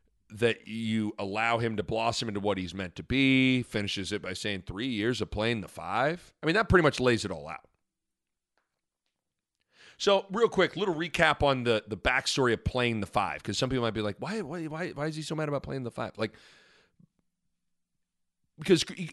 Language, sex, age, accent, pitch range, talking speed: English, male, 40-59, American, 105-155 Hz, 200 wpm